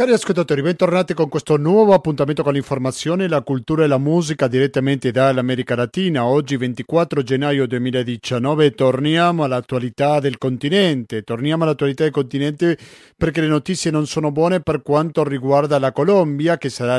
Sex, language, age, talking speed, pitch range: male, Italian, 40-59, 150 wpm, 125-155 Hz